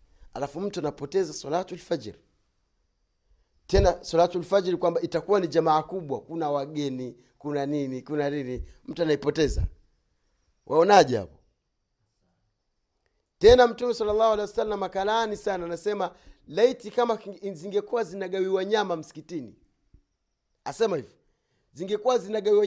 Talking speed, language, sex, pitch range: 110 wpm, Swahili, male, 140-210 Hz